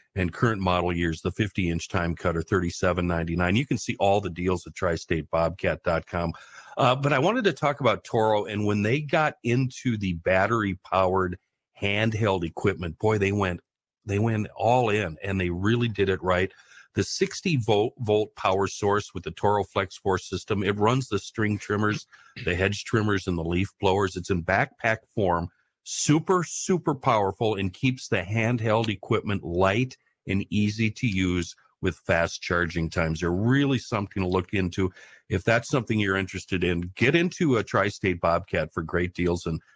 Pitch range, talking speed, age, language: 90-110 Hz, 170 wpm, 50-69, English